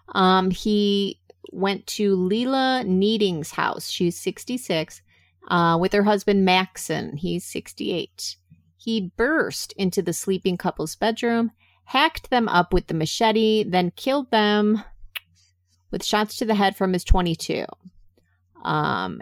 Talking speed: 130 wpm